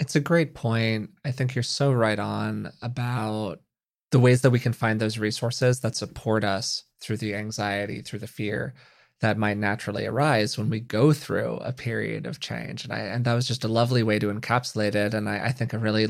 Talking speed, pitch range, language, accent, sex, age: 215 wpm, 110-125 Hz, English, American, male, 20-39